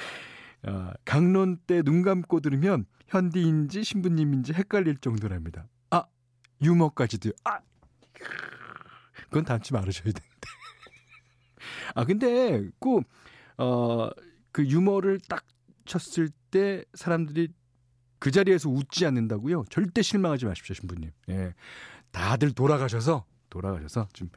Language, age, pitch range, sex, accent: Korean, 40-59, 110-165 Hz, male, native